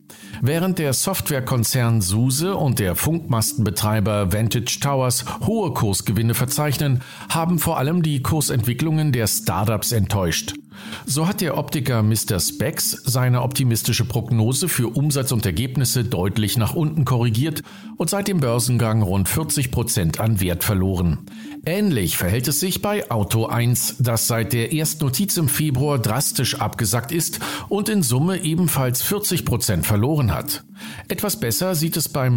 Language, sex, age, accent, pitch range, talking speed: German, male, 50-69, German, 110-155 Hz, 135 wpm